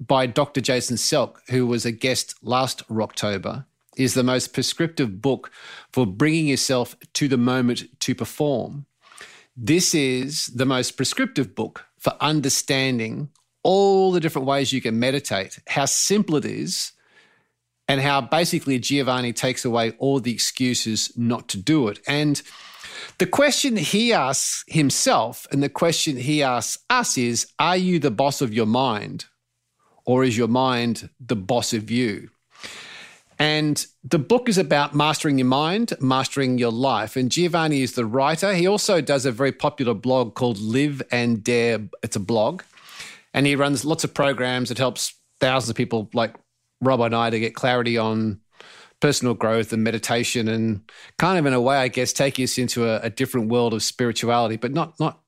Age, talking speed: 40-59, 170 wpm